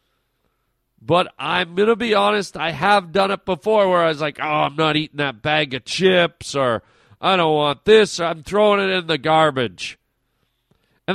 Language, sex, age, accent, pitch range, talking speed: English, male, 40-59, American, 145-195 Hz, 190 wpm